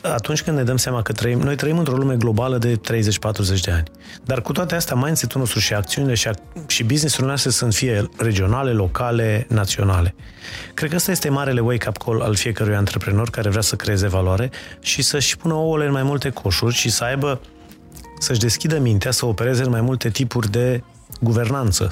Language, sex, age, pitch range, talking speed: Romanian, male, 30-49, 110-135 Hz, 205 wpm